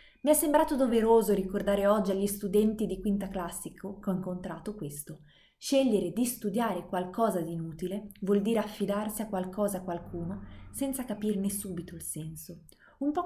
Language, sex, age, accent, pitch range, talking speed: Italian, female, 20-39, native, 180-215 Hz, 160 wpm